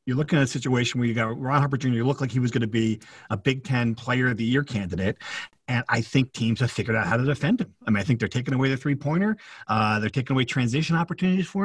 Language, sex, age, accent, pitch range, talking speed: English, male, 40-59, American, 125-160 Hz, 280 wpm